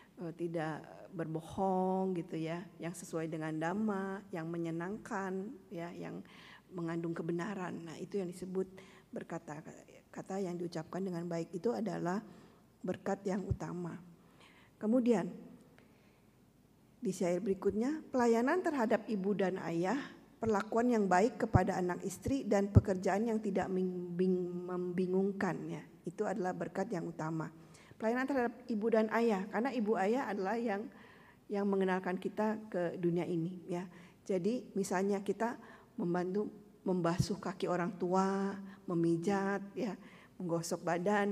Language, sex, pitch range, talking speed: Indonesian, female, 175-210 Hz, 120 wpm